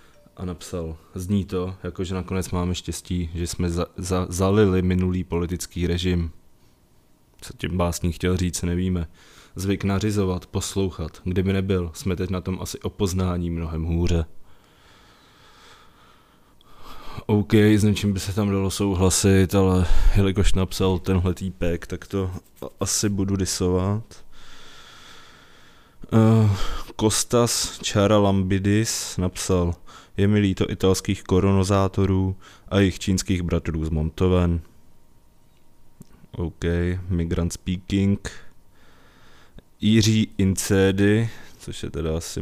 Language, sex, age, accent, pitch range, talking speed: Czech, male, 20-39, native, 85-100 Hz, 110 wpm